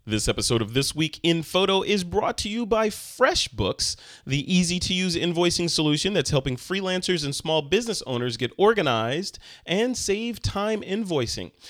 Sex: male